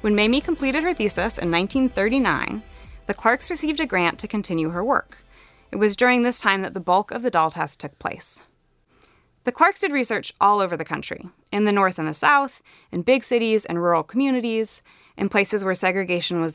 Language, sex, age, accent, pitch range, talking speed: English, female, 20-39, American, 170-240 Hz, 200 wpm